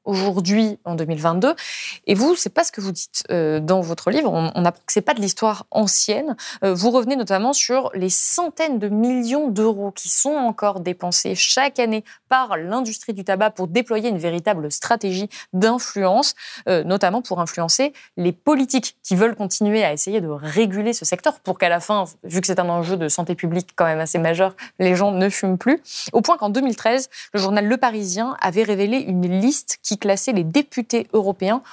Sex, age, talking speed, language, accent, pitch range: female, 20-39, 185 wpm, French, French, 185-245 Hz